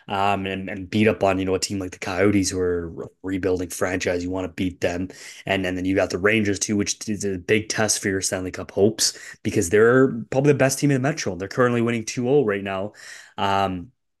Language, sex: English, male